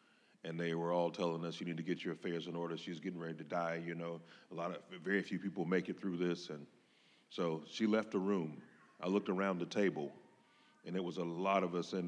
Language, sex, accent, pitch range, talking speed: English, male, American, 85-95 Hz, 250 wpm